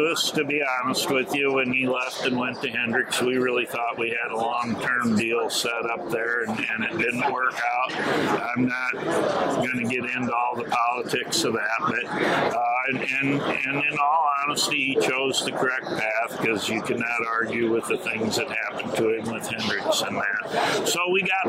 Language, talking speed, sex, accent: English, 205 wpm, male, American